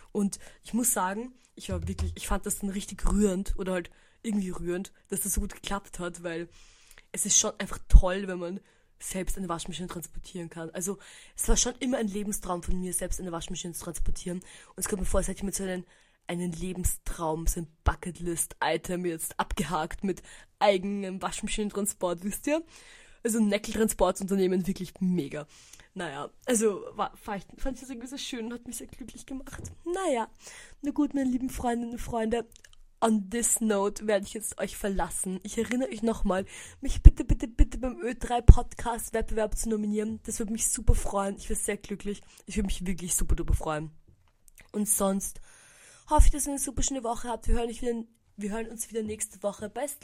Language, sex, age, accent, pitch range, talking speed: German, female, 20-39, German, 185-235 Hz, 190 wpm